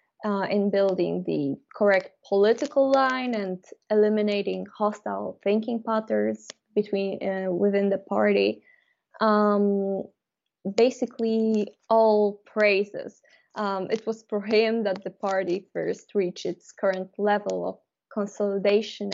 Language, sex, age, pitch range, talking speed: English, female, 20-39, 195-225 Hz, 115 wpm